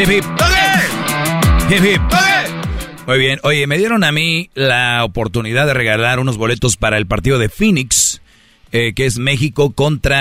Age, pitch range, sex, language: 40-59, 110-130 Hz, male, Spanish